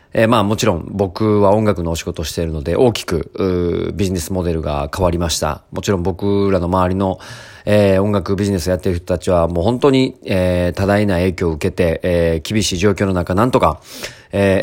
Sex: male